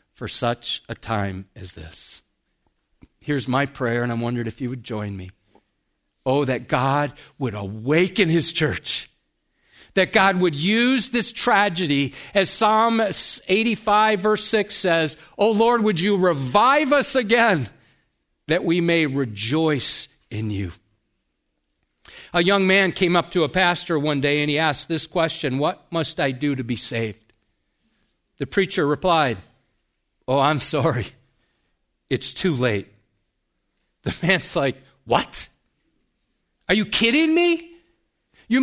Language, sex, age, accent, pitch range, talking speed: English, male, 50-69, American, 130-215 Hz, 140 wpm